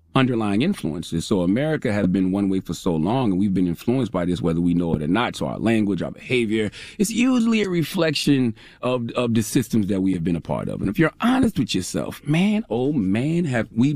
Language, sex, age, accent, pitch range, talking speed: English, male, 40-59, American, 105-165 Hz, 230 wpm